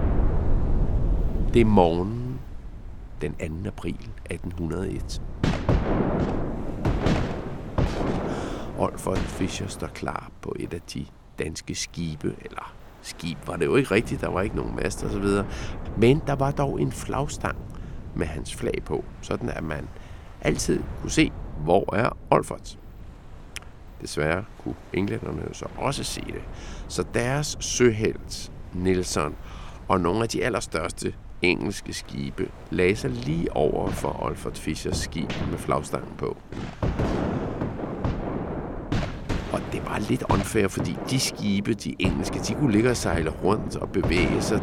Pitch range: 80-115 Hz